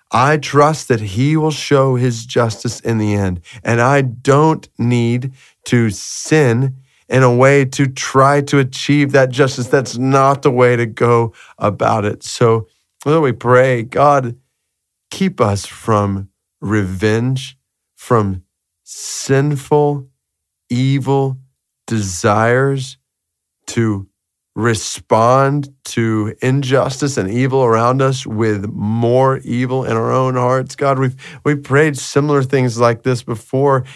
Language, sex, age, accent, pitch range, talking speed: English, male, 30-49, American, 115-140 Hz, 125 wpm